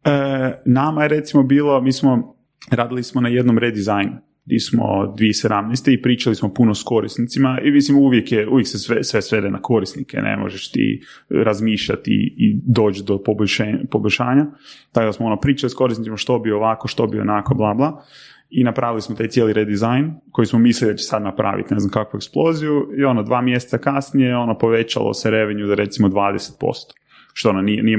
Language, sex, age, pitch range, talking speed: Croatian, male, 30-49, 105-135 Hz, 190 wpm